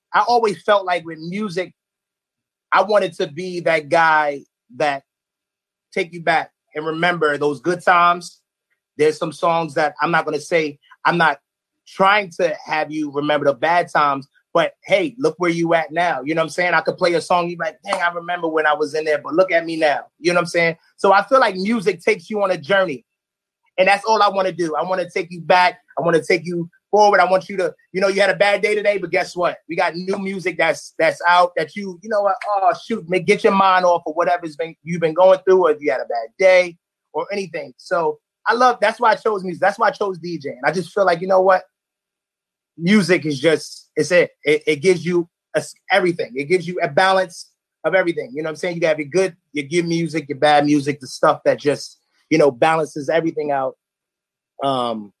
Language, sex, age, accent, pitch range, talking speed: English, male, 30-49, American, 160-195 Hz, 240 wpm